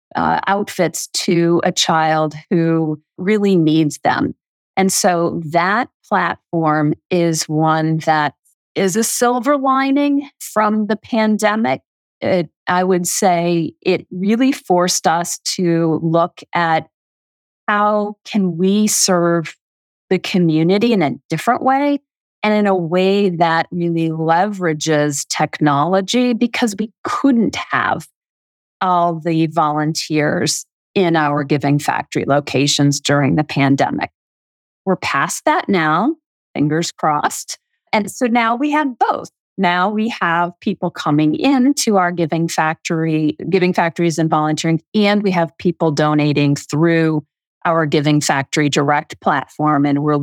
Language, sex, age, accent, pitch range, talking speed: English, female, 40-59, American, 155-195 Hz, 125 wpm